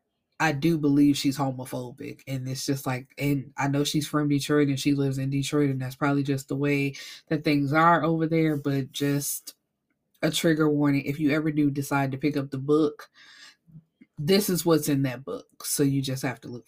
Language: English